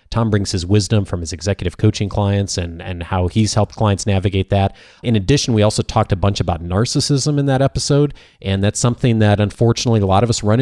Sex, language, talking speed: male, English, 220 wpm